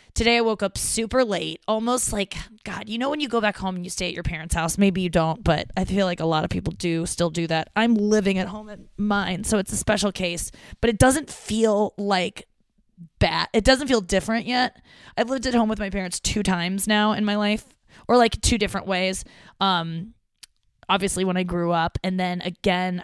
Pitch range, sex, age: 175-210 Hz, female, 20-39